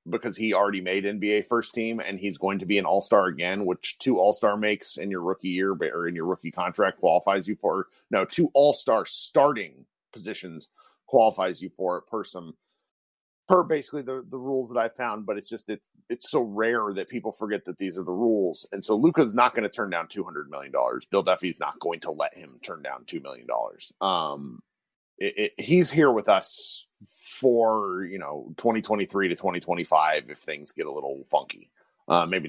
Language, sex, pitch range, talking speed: English, male, 95-130 Hz, 205 wpm